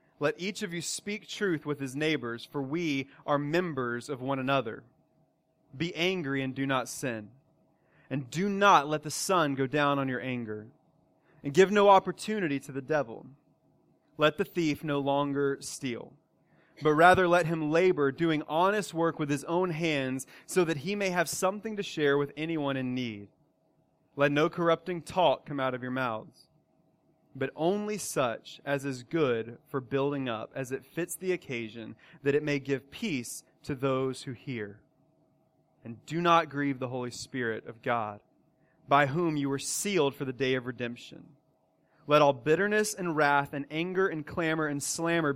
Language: English